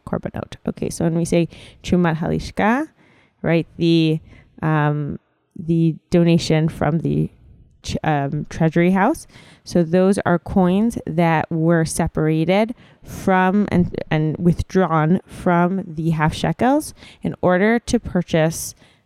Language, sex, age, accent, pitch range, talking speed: English, female, 20-39, American, 155-185 Hz, 120 wpm